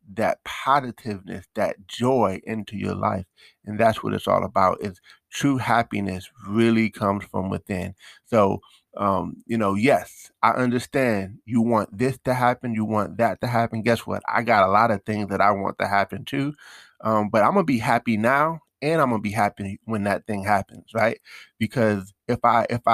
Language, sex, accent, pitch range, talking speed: English, male, American, 100-120 Hz, 195 wpm